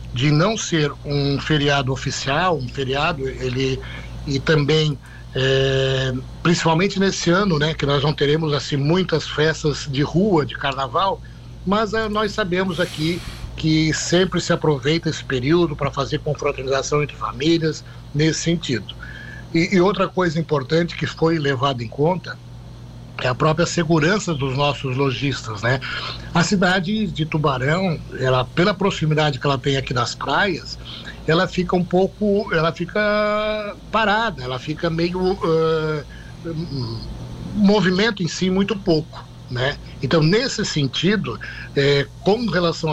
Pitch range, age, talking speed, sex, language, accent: 135-170 Hz, 60-79, 135 wpm, male, Portuguese, Brazilian